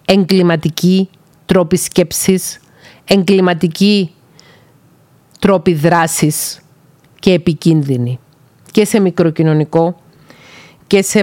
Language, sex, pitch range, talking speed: Greek, female, 155-195 Hz, 70 wpm